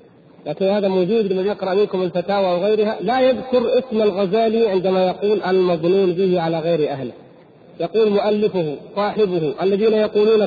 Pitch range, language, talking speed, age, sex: 195-245 Hz, Arabic, 145 wpm, 40-59, male